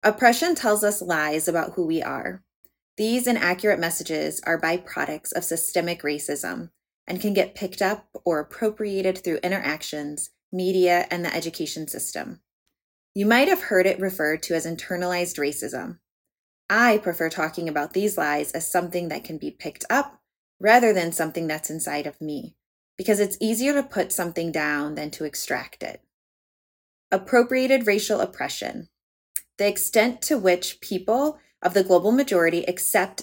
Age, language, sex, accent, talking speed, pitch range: 20-39, English, female, American, 150 wpm, 165-210 Hz